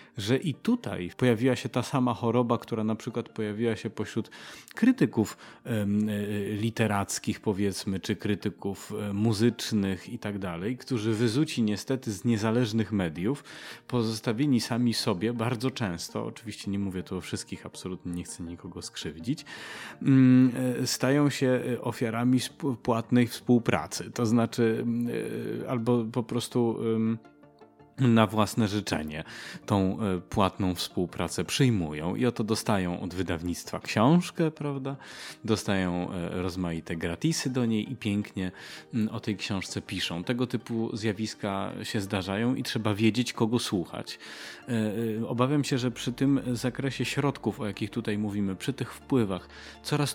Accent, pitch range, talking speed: native, 100-125 Hz, 125 wpm